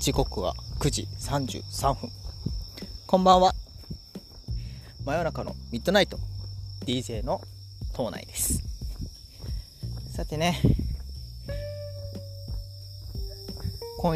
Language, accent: Japanese, native